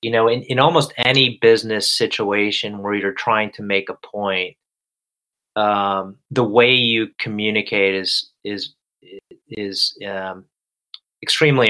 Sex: male